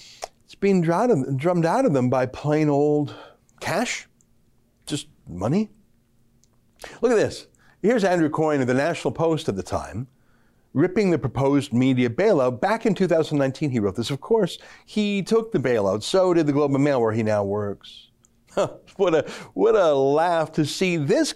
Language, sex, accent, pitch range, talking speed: English, male, American, 120-175 Hz, 165 wpm